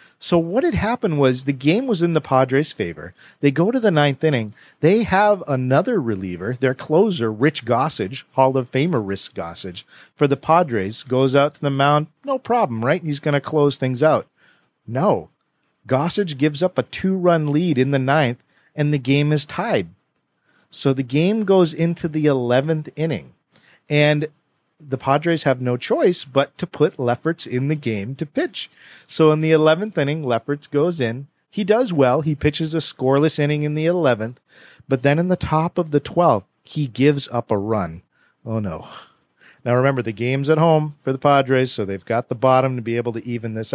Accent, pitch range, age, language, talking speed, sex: American, 125-160 Hz, 40-59, English, 190 wpm, male